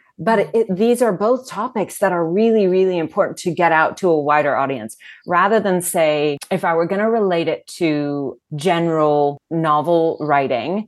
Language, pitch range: English, 150-185 Hz